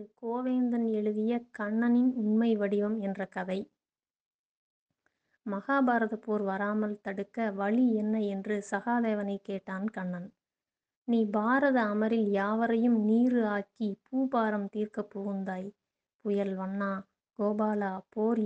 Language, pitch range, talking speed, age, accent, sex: Tamil, 195-225 Hz, 95 wpm, 20-39, native, female